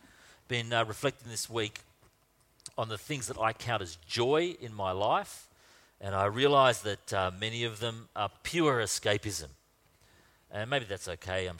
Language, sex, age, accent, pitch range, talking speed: English, male, 40-59, Australian, 95-135 Hz, 165 wpm